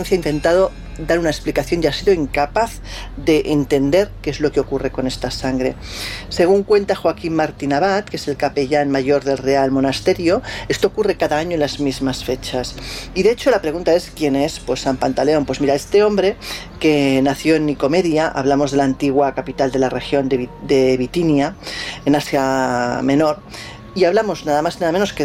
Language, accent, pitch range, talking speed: Spanish, Spanish, 135-170 Hz, 195 wpm